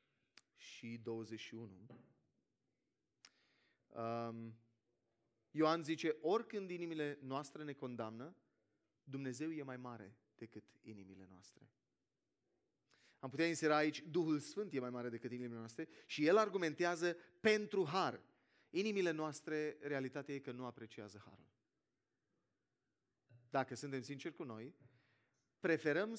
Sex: male